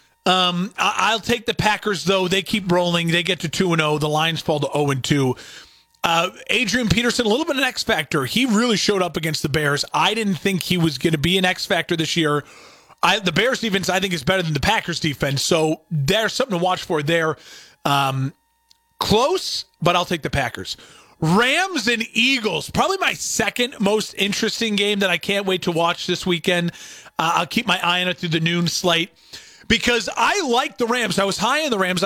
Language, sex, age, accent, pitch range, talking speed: English, male, 30-49, American, 170-220 Hz, 205 wpm